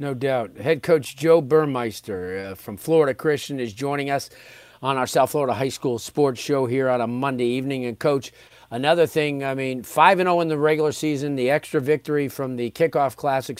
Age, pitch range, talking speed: 40-59, 120-155 Hz, 205 wpm